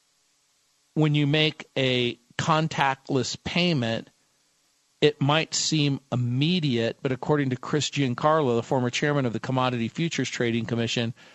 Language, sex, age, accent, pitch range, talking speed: English, male, 50-69, American, 125-155 Hz, 125 wpm